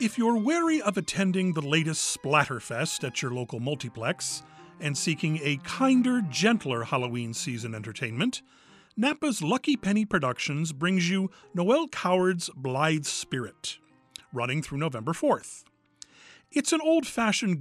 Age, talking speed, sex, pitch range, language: 40-59, 125 wpm, male, 130-210 Hz, English